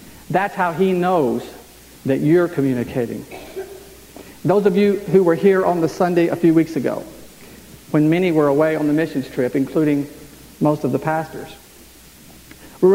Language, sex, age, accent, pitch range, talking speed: English, male, 50-69, American, 150-205 Hz, 160 wpm